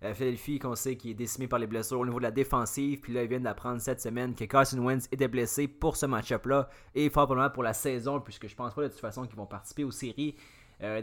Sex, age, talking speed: male, 20-39, 260 wpm